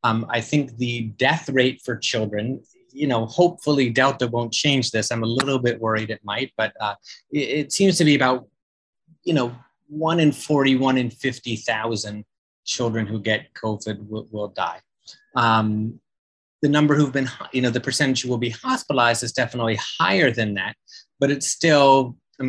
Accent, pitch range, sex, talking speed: American, 115-145 Hz, male, 180 wpm